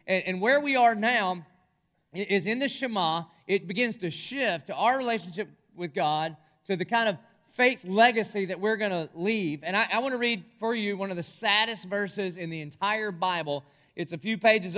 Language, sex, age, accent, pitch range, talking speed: English, male, 30-49, American, 155-215 Hz, 200 wpm